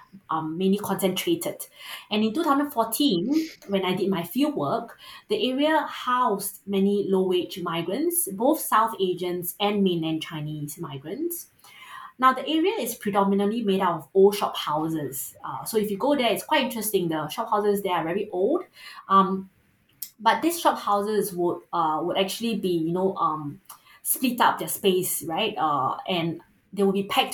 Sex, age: female, 20-39